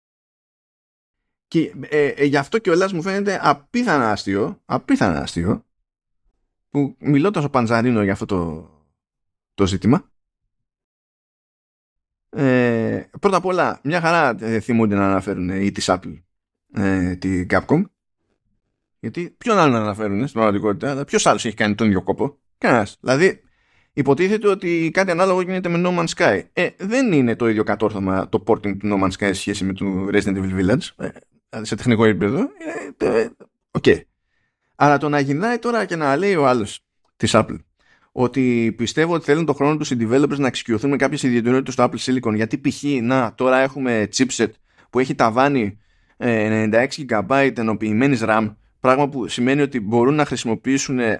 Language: Greek